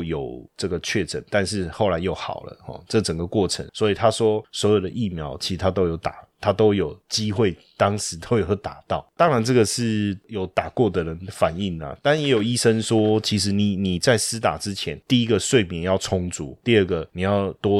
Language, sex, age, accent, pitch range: Chinese, male, 20-39, native, 90-115 Hz